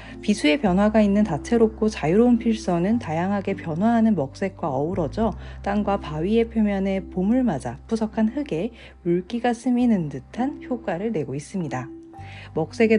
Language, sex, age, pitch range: Korean, female, 40-59, 170-235 Hz